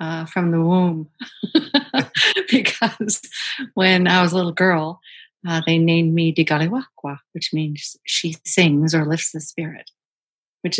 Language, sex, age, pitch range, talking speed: English, female, 50-69, 165-185 Hz, 140 wpm